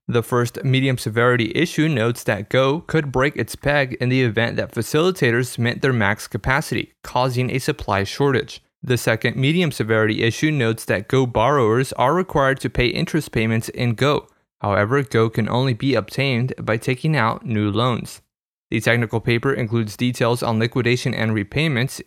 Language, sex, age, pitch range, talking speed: English, male, 20-39, 115-140 Hz, 170 wpm